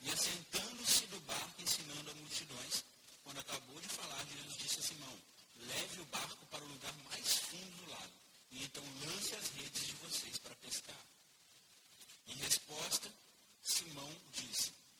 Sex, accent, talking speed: male, Brazilian, 150 wpm